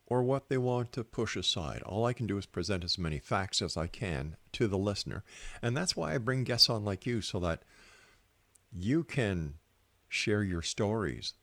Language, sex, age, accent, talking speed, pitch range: English, male, 50-69, American, 200 wpm, 90-115 Hz